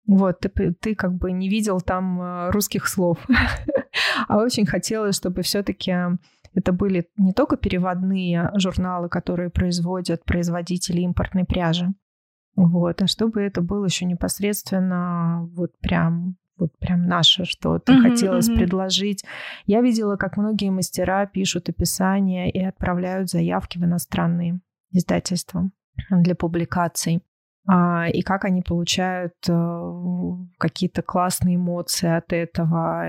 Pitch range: 170-195 Hz